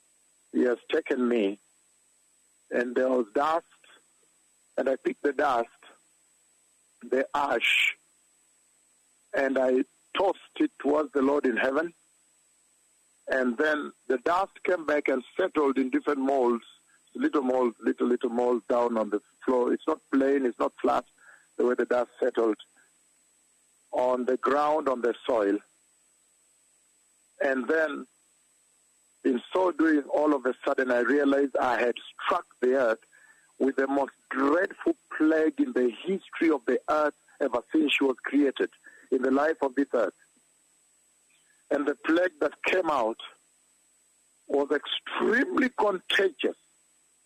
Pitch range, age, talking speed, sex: 125-160 Hz, 50-69, 135 wpm, male